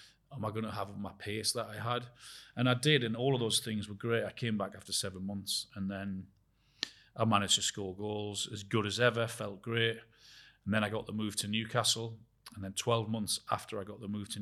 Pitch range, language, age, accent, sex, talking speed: 100-115 Hz, English, 30-49, British, male, 235 wpm